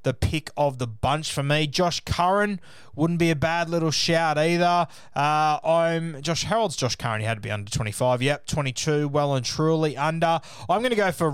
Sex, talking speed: male, 205 wpm